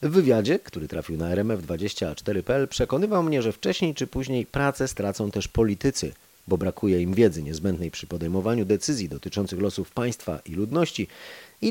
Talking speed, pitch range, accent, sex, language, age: 155 wpm, 95-125 Hz, native, male, Polish, 30-49